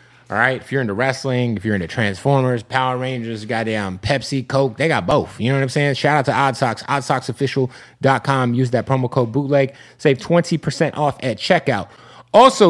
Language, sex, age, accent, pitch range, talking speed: English, male, 30-49, American, 115-150 Hz, 190 wpm